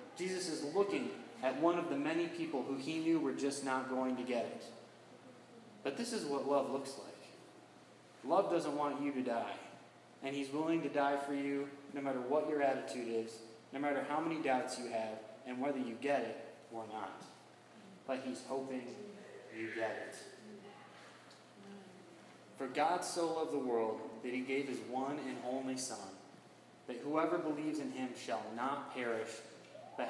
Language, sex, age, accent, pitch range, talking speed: English, male, 20-39, American, 125-160 Hz, 175 wpm